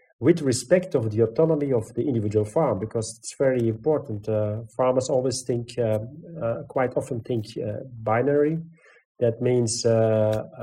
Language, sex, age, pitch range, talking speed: English, male, 40-59, 110-150 Hz, 150 wpm